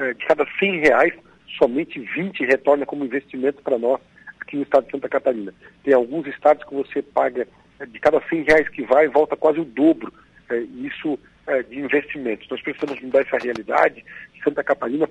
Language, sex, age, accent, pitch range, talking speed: Portuguese, male, 60-79, Brazilian, 135-155 Hz, 180 wpm